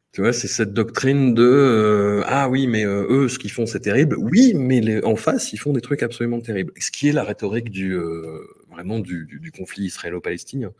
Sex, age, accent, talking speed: male, 30-49, French, 230 wpm